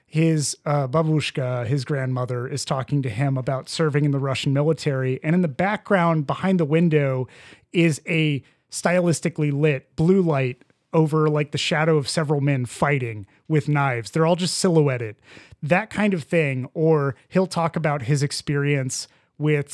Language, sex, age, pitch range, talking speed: English, male, 30-49, 135-160 Hz, 160 wpm